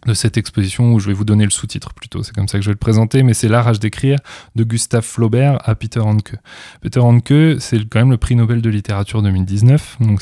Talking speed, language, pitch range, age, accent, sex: 240 wpm, French, 105-120 Hz, 20-39, French, male